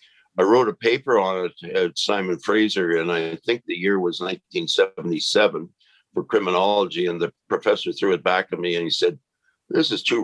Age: 60-79